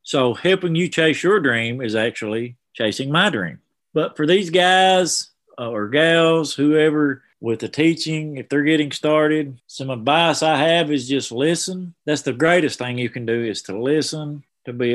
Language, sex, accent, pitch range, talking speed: English, male, American, 125-155 Hz, 175 wpm